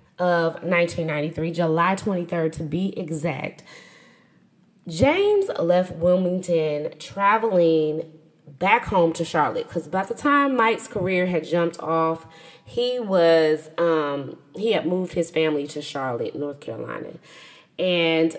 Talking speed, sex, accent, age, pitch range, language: 120 wpm, female, American, 20-39, 160-215 Hz, English